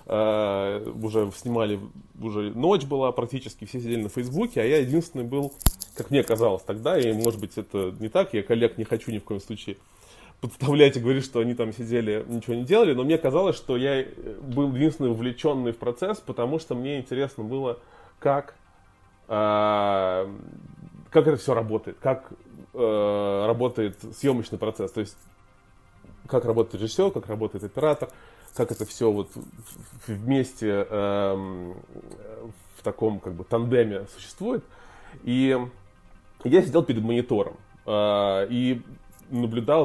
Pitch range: 105-130 Hz